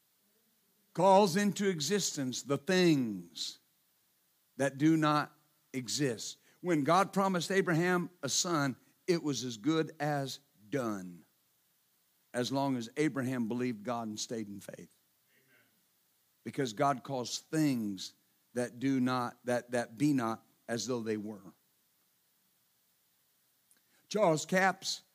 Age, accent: 50-69, American